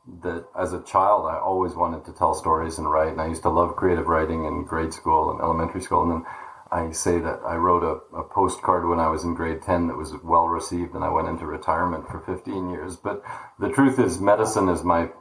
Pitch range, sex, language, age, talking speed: 80-90 Hz, male, English, 40-59, 235 wpm